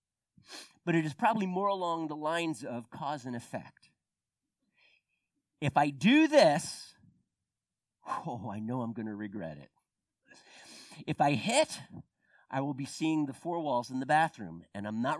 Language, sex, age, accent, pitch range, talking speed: English, male, 50-69, American, 115-175 Hz, 160 wpm